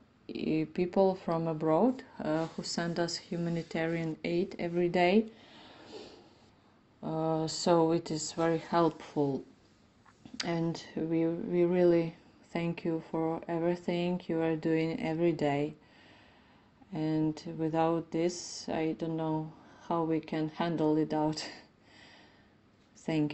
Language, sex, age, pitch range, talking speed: English, female, 30-49, 160-175 Hz, 110 wpm